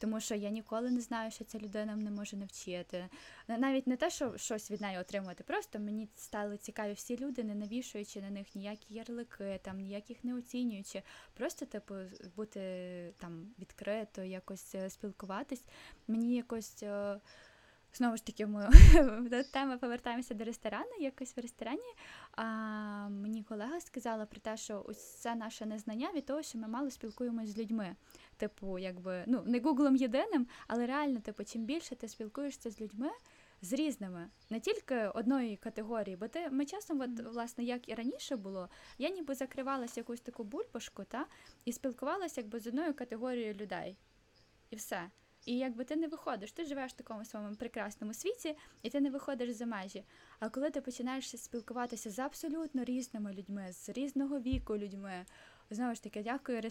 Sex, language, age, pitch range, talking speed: female, Ukrainian, 10-29, 210-265 Hz, 165 wpm